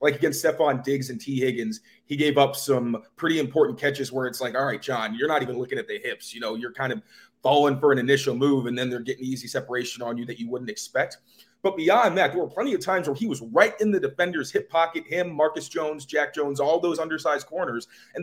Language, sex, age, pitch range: English, male, 30-49, 135-165 Hz